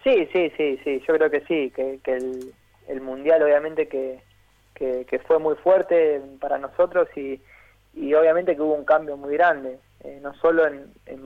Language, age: Spanish, 20-39